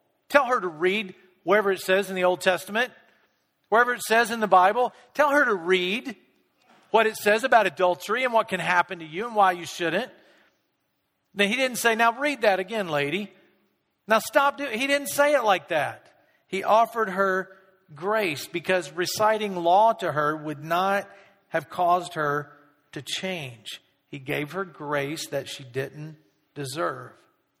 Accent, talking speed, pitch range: American, 170 wpm, 155-205 Hz